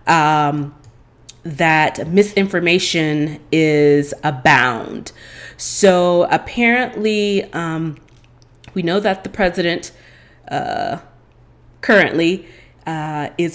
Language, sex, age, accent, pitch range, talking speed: English, female, 30-49, American, 155-190 Hz, 75 wpm